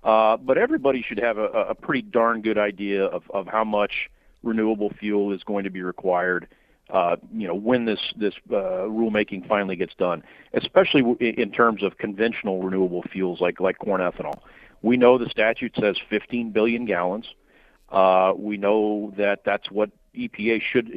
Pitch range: 100-120 Hz